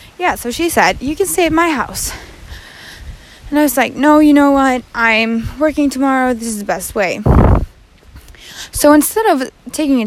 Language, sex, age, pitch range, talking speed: English, female, 20-39, 215-285 Hz, 185 wpm